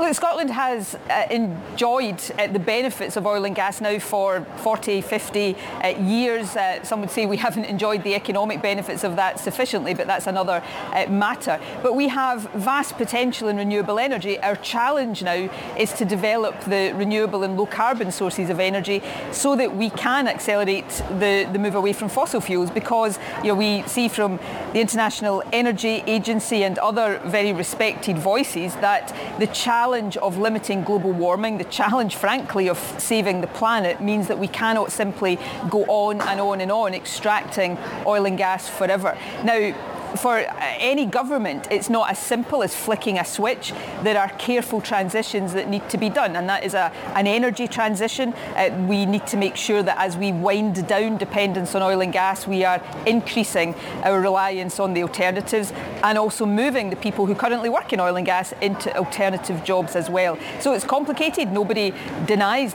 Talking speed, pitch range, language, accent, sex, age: 180 wpm, 195-225 Hz, English, British, female, 40-59